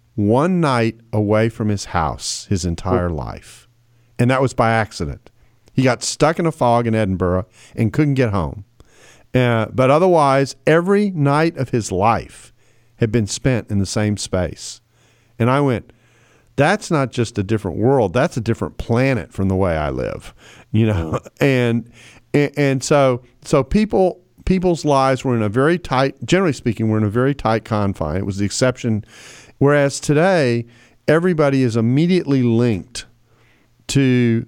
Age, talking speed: 50-69, 160 wpm